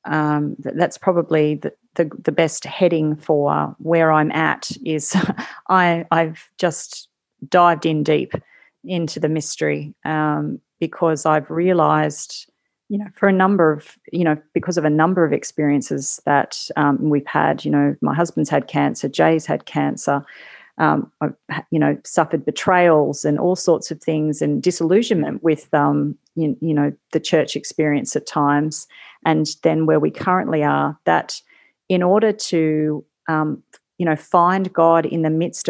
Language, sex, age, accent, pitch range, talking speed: English, female, 40-59, Australian, 150-170 Hz, 160 wpm